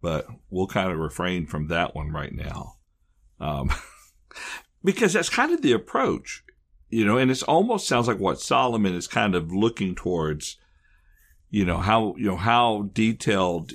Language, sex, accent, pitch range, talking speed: English, male, American, 90-130 Hz, 165 wpm